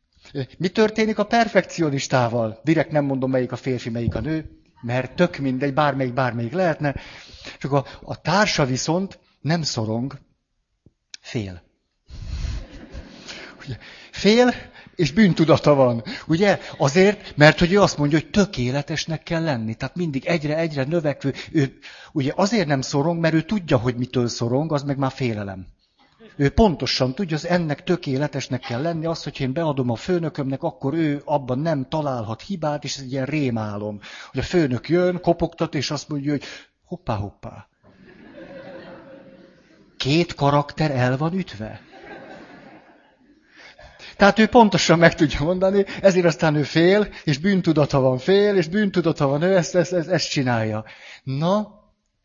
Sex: male